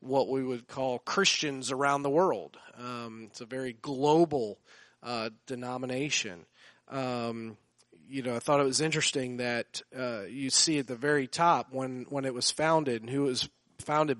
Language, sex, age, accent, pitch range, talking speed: English, male, 40-59, American, 120-145 Hz, 175 wpm